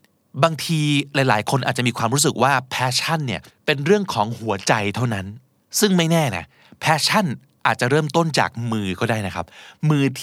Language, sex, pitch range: Thai, male, 110-150 Hz